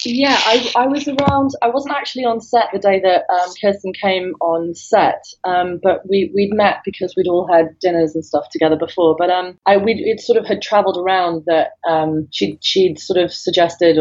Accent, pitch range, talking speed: British, 160-190 Hz, 210 wpm